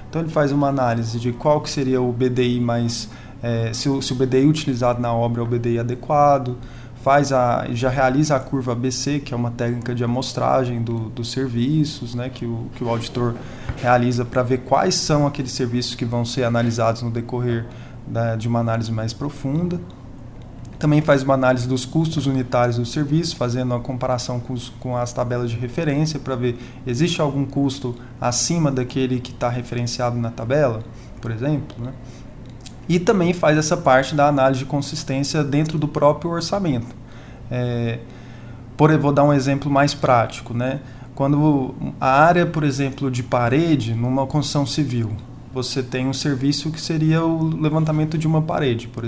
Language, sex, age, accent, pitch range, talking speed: Portuguese, male, 20-39, Brazilian, 120-145 Hz, 165 wpm